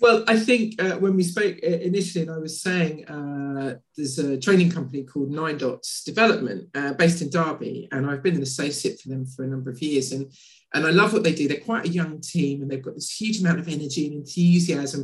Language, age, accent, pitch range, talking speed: English, 50-69, British, 145-195 Hz, 235 wpm